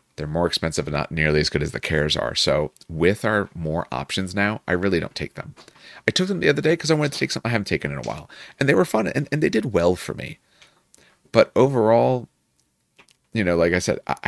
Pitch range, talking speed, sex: 80-110 Hz, 250 wpm, male